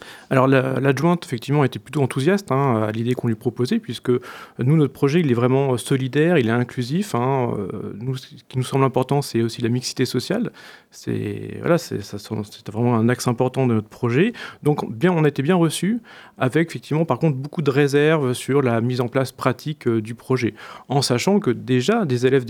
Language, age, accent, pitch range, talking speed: French, 40-59, French, 125-155 Hz, 200 wpm